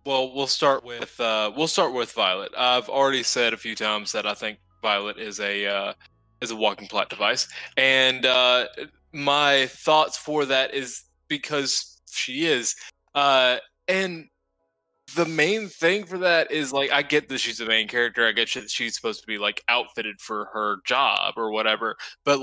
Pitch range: 115-155 Hz